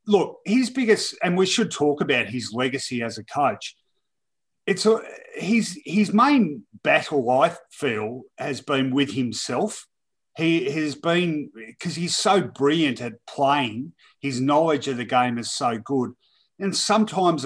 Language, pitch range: English, 125-160 Hz